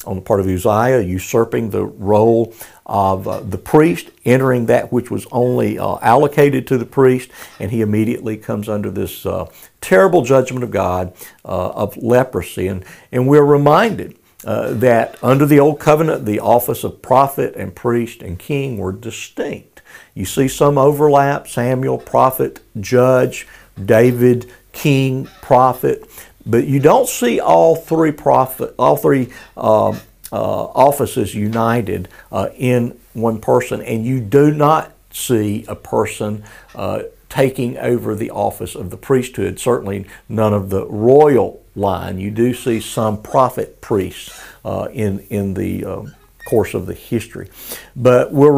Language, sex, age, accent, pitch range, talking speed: English, male, 50-69, American, 105-135 Hz, 150 wpm